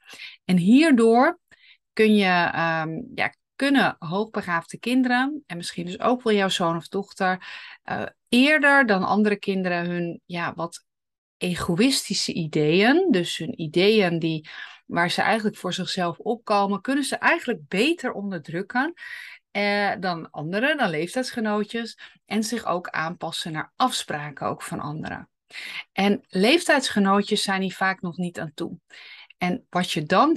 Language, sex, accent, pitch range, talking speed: Dutch, female, Dutch, 175-235 Hz, 125 wpm